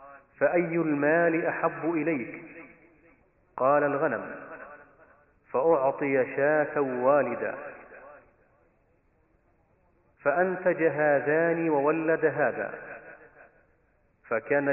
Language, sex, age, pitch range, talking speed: Arabic, male, 40-59, 140-165 Hz, 55 wpm